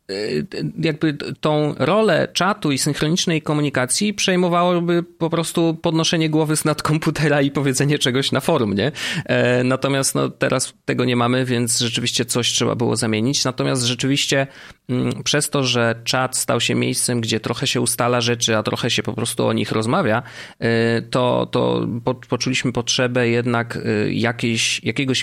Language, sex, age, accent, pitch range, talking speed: Polish, male, 30-49, native, 115-145 Hz, 145 wpm